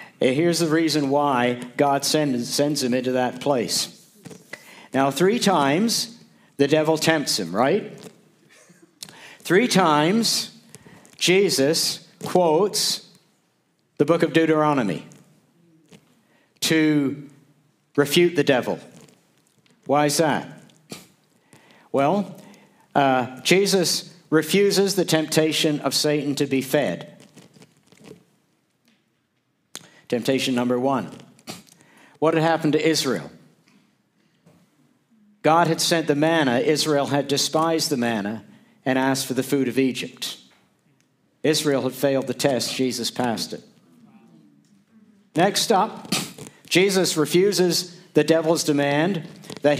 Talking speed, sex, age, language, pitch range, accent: 100 wpm, male, 60-79, English, 140-170 Hz, American